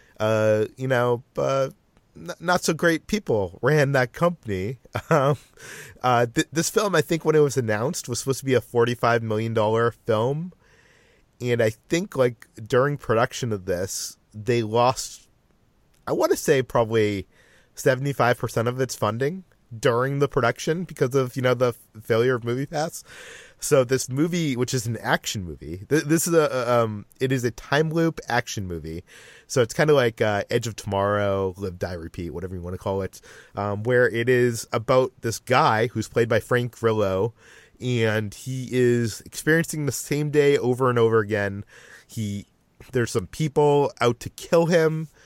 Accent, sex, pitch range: American, male, 110-140 Hz